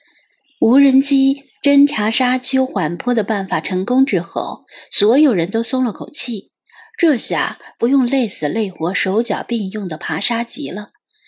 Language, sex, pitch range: Chinese, female, 190-260 Hz